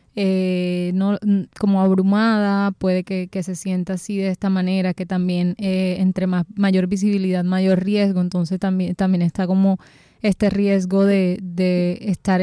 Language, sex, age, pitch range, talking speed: Spanish, female, 20-39, 180-200 Hz, 155 wpm